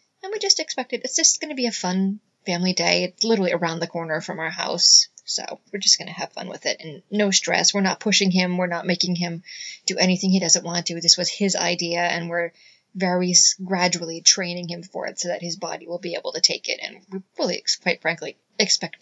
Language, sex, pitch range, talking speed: English, female, 175-235 Hz, 235 wpm